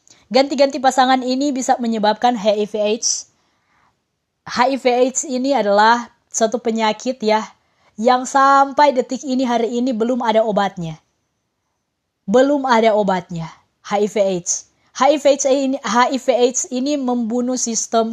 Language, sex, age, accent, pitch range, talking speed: Indonesian, female, 20-39, native, 205-260 Hz, 105 wpm